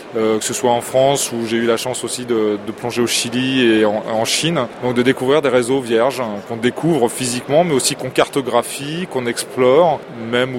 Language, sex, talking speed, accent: French, male, 215 wpm, French